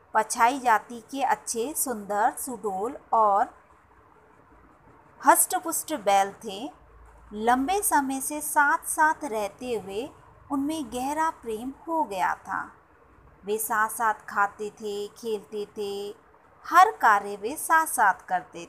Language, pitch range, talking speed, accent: English, 210-285 Hz, 105 wpm, Indian